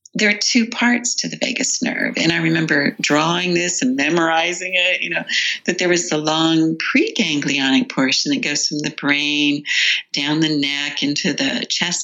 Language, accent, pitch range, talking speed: English, American, 155-255 Hz, 180 wpm